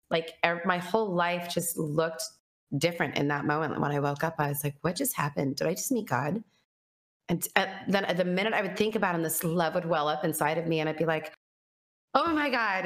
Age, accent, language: 30-49, American, English